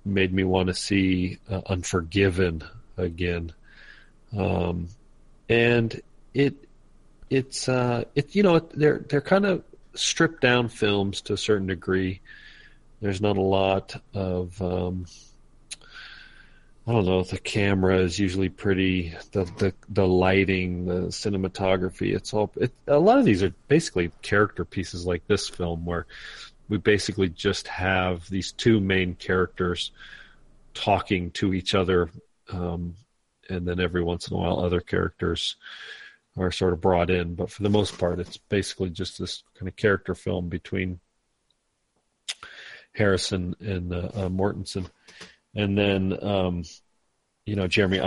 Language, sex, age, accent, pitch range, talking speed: English, male, 40-59, American, 90-100 Hz, 140 wpm